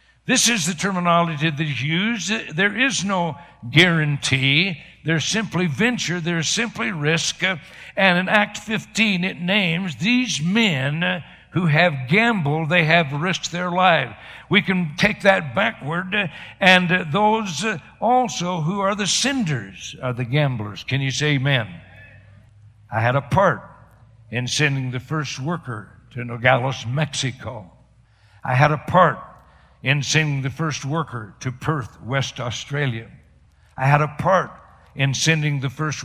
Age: 60-79